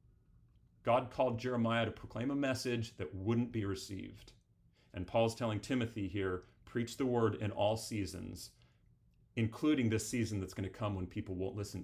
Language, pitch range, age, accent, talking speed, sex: English, 95-115 Hz, 40-59, American, 165 wpm, male